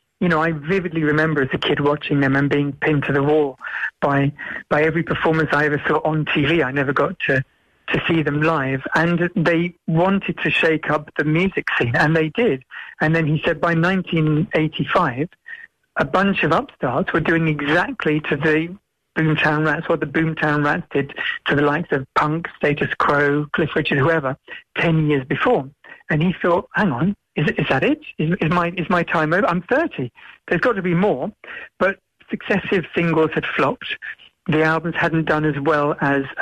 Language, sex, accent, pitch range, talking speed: English, male, British, 145-170 Hz, 190 wpm